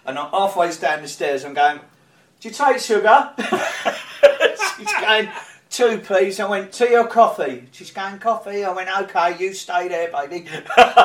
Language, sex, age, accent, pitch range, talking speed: English, male, 40-59, British, 145-230 Hz, 175 wpm